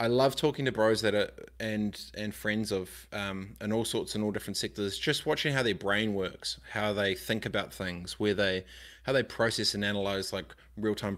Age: 20-39